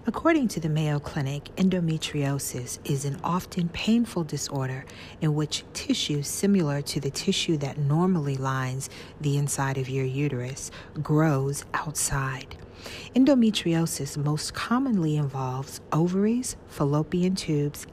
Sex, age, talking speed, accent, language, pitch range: female, 40-59, 115 wpm, American, English, 140-170 Hz